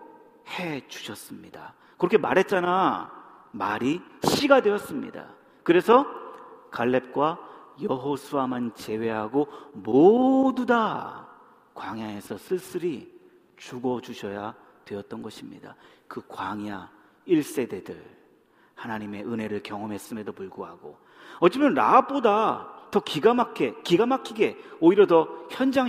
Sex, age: male, 40-59